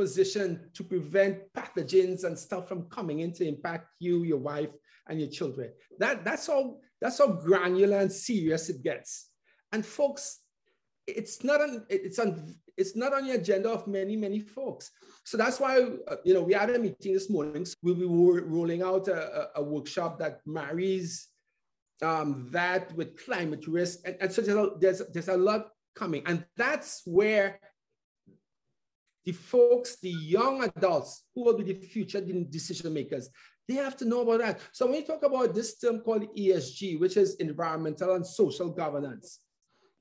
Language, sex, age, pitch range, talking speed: English, male, 50-69, 180-245 Hz, 170 wpm